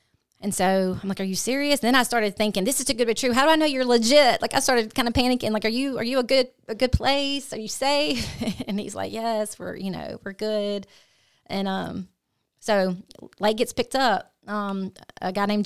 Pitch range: 180-215 Hz